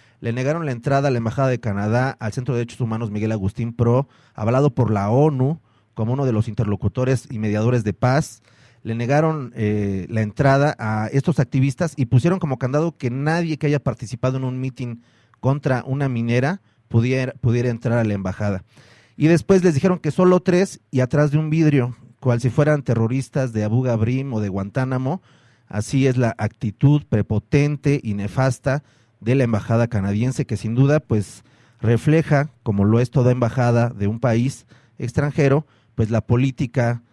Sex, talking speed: male, 175 wpm